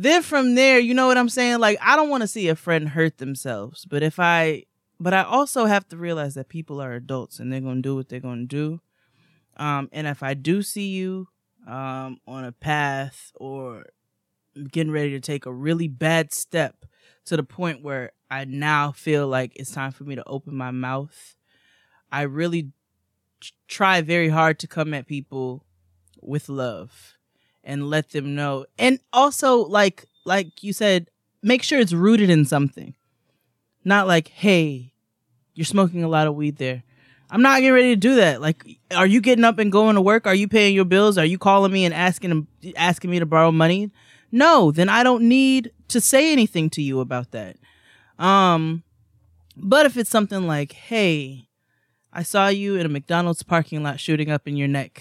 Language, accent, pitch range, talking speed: English, American, 135-195 Hz, 195 wpm